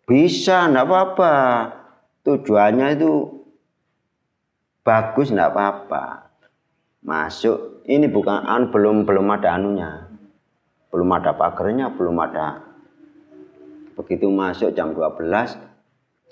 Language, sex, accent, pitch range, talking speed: Indonesian, male, native, 100-140 Hz, 85 wpm